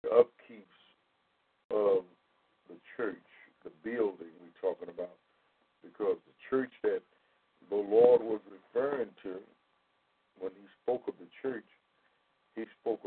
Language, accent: English, American